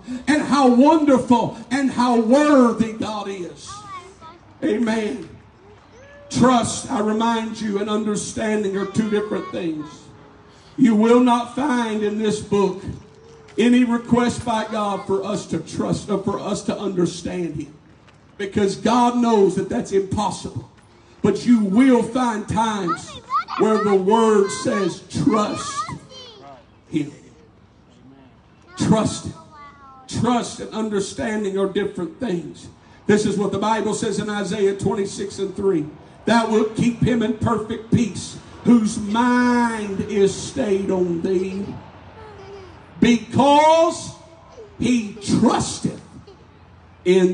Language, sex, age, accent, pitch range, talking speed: English, male, 50-69, American, 190-240 Hz, 120 wpm